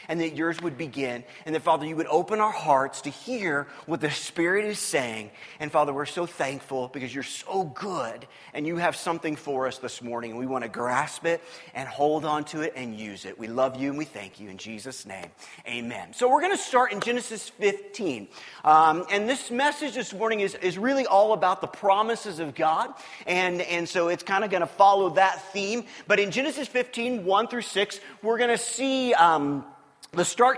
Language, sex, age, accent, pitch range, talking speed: English, male, 30-49, American, 160-240 Hz, 215 wpm